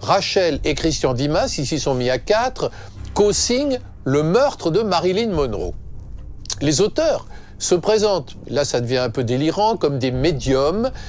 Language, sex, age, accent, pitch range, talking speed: French, male, 50-69, French, 135-215 Hz, 150 wpm